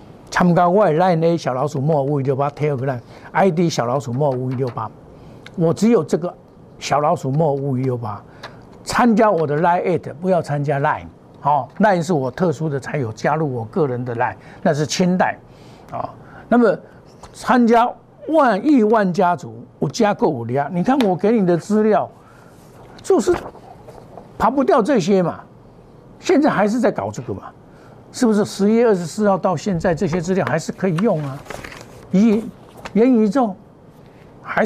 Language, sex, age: Chinese, male, 60-79